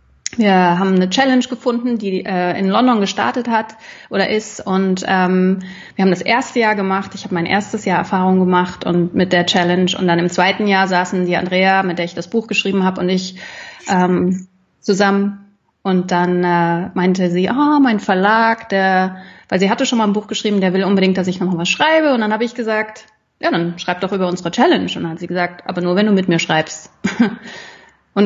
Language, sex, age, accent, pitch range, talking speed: German, female, 30-49, German, 185-220 Hz, 220 wpm